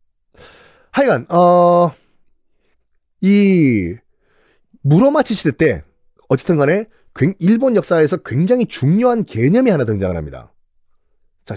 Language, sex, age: Korean, male, 40-59